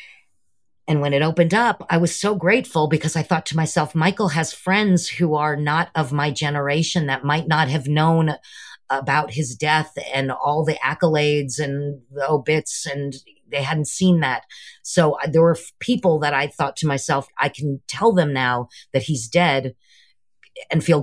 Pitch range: 145-180 Hz